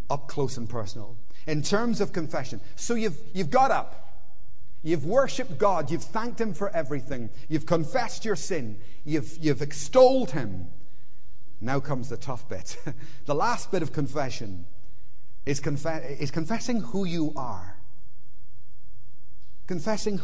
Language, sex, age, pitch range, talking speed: English, male, 30-49, 110-165 Hz, 140 wpm